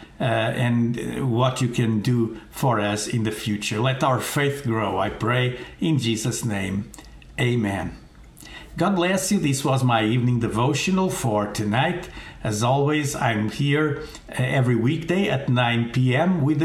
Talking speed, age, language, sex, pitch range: 150 wpm, 60-79, English, male, 115-160 Hz